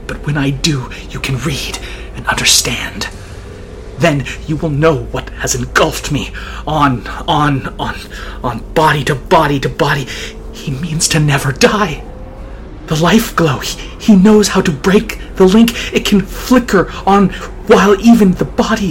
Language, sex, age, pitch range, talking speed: English, male, 30-49, 140-195 Hz, 160 wpm